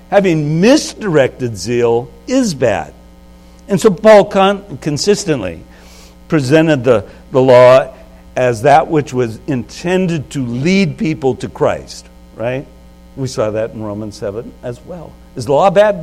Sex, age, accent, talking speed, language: male, 60-79, American, 135 wpm, English